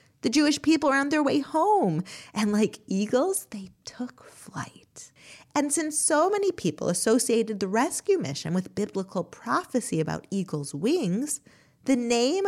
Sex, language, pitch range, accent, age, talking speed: female, English, 190-310 Hz, American, 30-49, 150 wpm